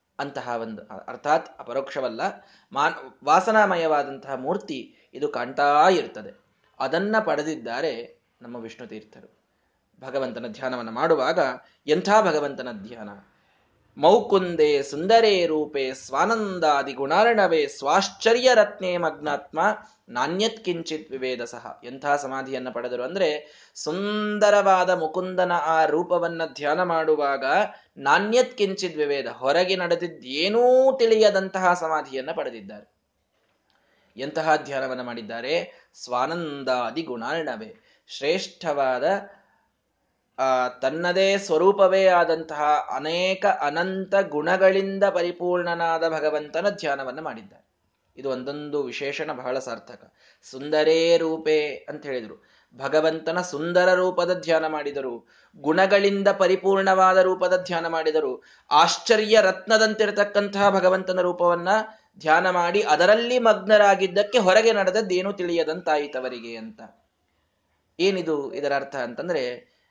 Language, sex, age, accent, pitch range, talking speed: Kannada, male, 20-39, native, 145-195 Hz, 85 wpm